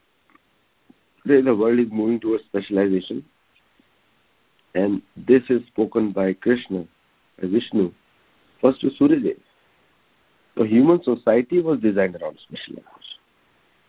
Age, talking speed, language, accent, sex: 60-79, 110 wpm, English, Indian, male